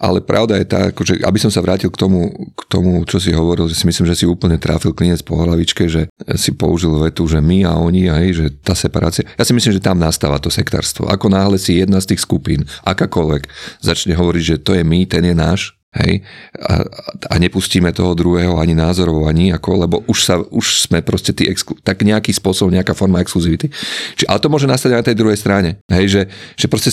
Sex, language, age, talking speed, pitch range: male, Slovak, 40-59, 225 wpm, 80-100 Hz